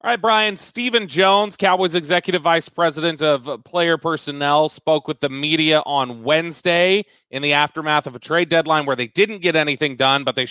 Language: English